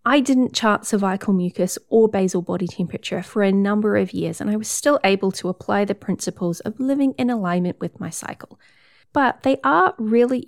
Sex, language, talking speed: female, English, 195 wpm